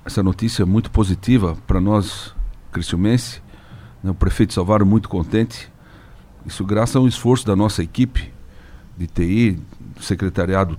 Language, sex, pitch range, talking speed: Portuguese, male, 95-110 Hz, 145 wpm